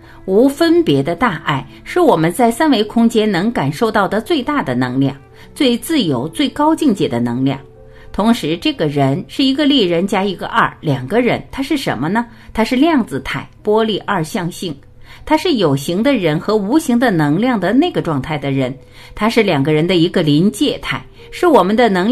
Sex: female